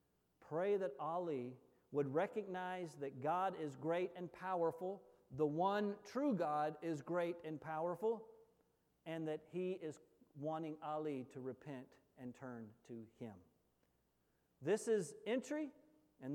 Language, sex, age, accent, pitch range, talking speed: English, male, 50-69, American, 140-200 Hz, 130 wpm